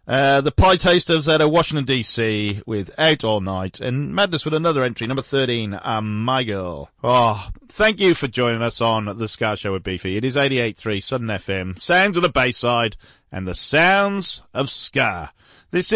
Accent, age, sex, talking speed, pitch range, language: British, 40-59, male, 185 wpm, 100-145 Hz, English